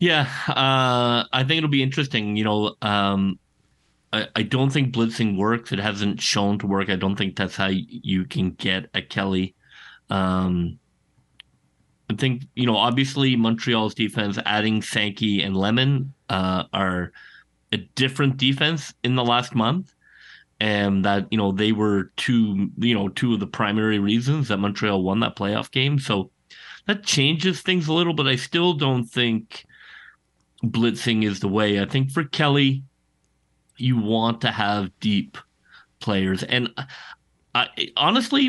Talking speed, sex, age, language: 155 wpm, male, 30-49, English